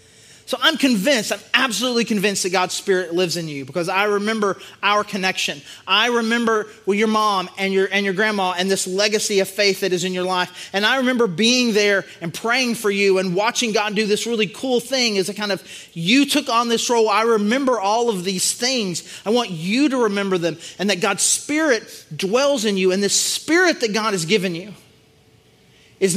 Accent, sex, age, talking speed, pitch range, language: American, male, 30-49, 210 wpm, 180-230 Hz, English